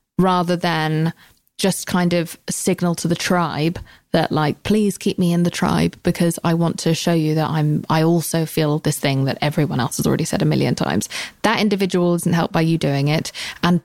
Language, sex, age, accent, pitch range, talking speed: English, female, 20-39, British, 160-185 Hz, 210 wpm